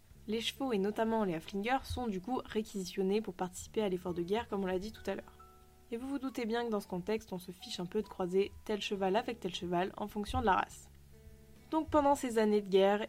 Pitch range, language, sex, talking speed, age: 185-230 Hz, French, female, 250 wpm, 20-39